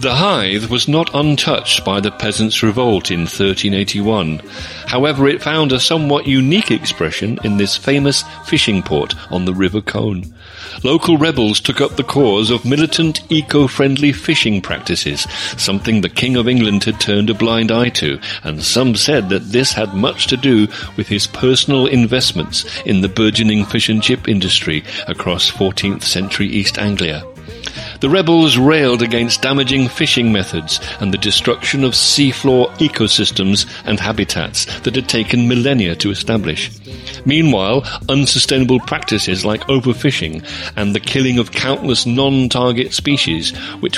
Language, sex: English, male